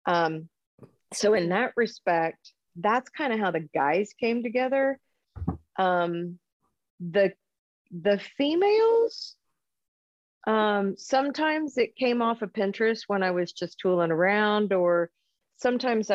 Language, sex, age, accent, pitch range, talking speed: English, female, 40-59, American, 170-220 Hz, 120 wpm